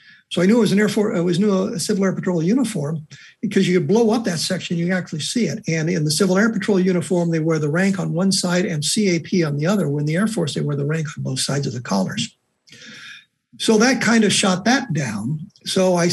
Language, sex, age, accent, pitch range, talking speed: English, male, 60-79, American, 165-200 Hz, 255 wpm